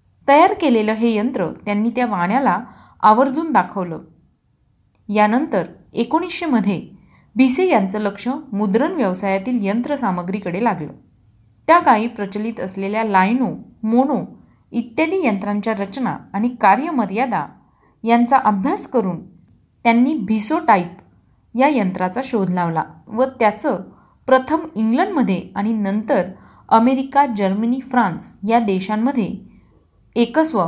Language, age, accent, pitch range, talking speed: Marathi, 30-49, native, 195-255 Hz, 100 wpm